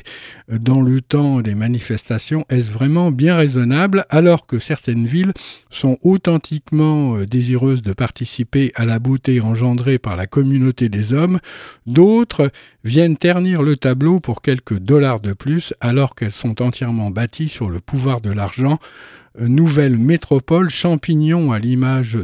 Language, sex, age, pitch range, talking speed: French, male, 60-79, 120-155 Hz, 140 wpm